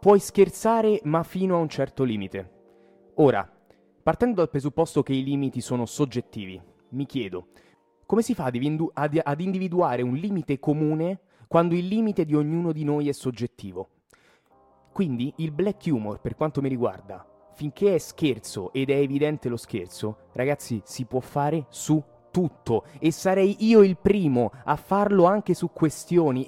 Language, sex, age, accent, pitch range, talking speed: Italian, male, 20-39, native, 140-180 Hz, 155 wpm